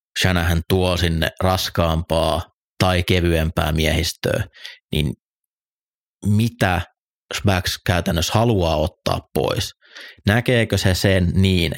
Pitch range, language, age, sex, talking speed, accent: 85-95 Hz, Finnish, 30-49, male, 90 wpm, native